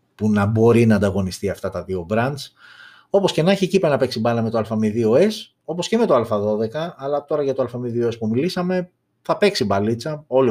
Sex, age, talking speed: male, 30-49, 205 wpm